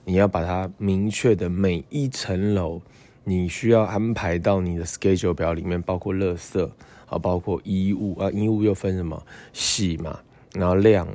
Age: 20-39